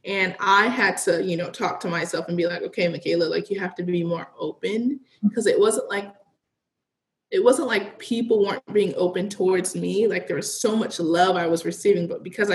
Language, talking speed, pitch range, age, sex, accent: English, 215 wpm, 175-220 Hz, 20-39, female, American